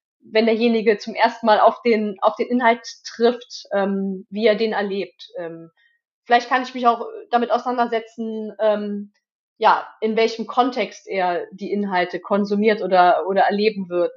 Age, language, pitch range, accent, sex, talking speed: 30-49, German, 205-240 Hz, German, female, 155 wpm